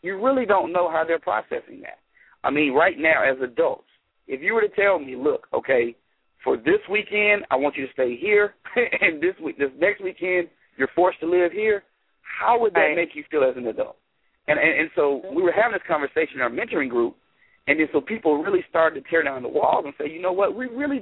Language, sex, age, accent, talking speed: English, male, 40-59, American, 235 wpm